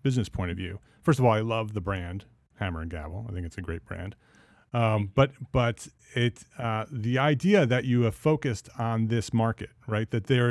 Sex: male